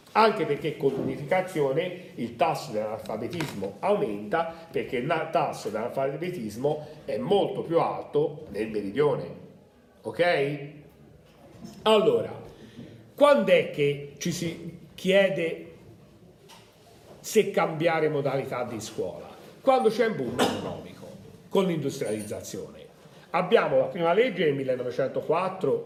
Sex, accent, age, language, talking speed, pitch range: male, native, 40-59, Italian, 100 wpm, 135-200 Hz